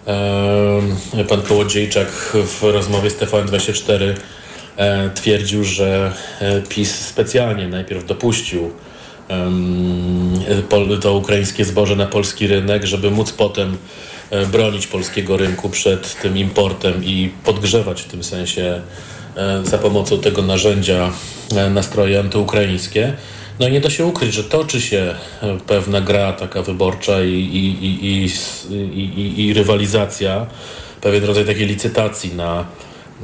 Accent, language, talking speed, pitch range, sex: native, Polish, 105 wpm, 95-105 Hz, male